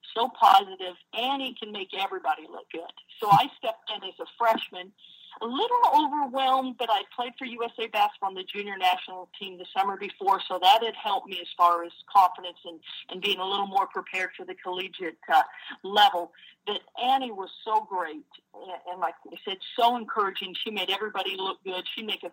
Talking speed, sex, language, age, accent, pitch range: 195 wpm, female, English, 50-69, American, 180-230 Hz